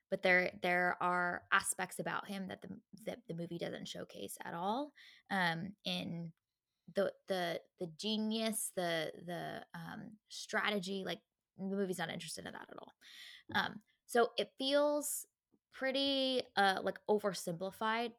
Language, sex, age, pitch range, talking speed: English, female, 20-39, 175-215 Hz, 140 wpm